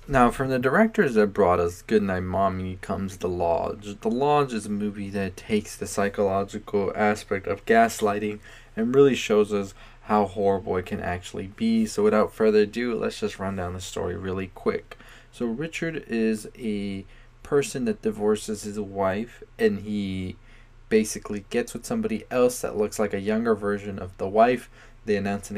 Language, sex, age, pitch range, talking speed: English, male, 20-39, 100-135 Hz, 175 wpm